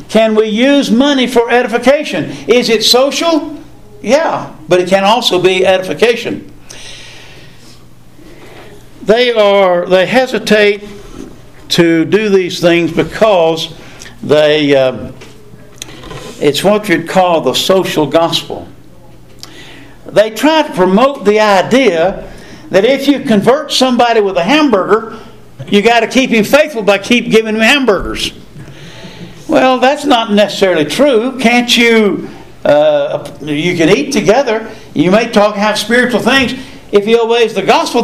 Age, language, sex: 60-79, English, male